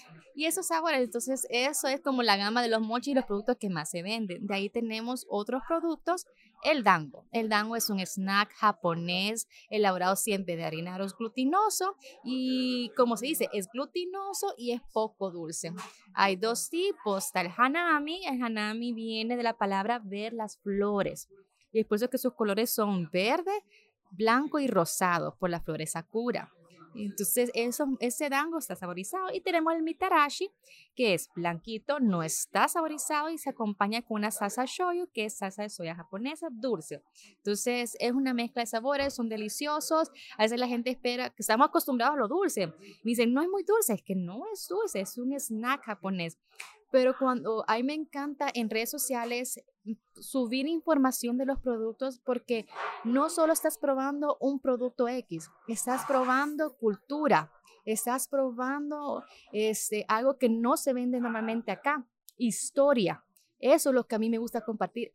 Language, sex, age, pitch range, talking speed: Spanish, female, 20-39, 210-275 Hz, 170 wpm